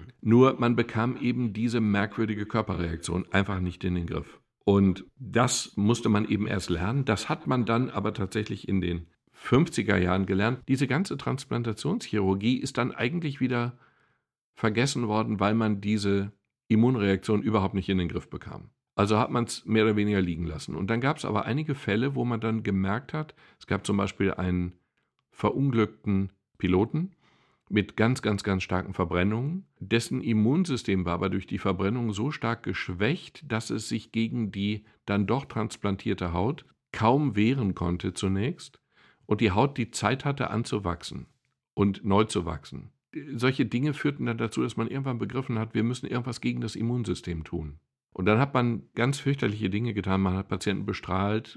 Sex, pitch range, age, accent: male, 95-120 Hz, 50-69, German